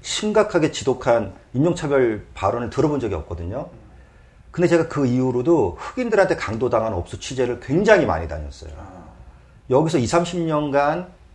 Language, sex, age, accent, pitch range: Korean, male, 40-59, native, 90-135 Hz